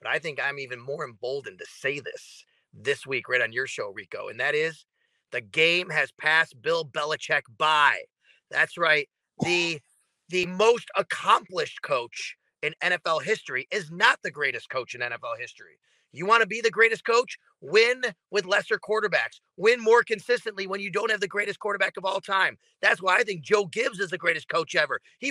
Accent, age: American, 30-49